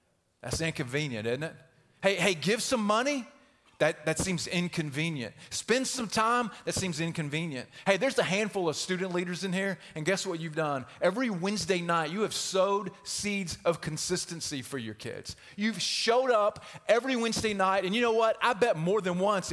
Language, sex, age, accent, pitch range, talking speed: English, male, 30-49, American, 160-220 Hz, 185 wpm